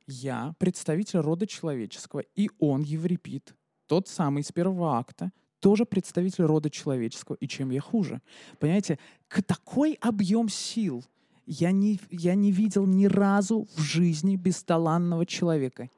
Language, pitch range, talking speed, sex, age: Russian, 140-190 Hz, 130 wpm, male, 20-39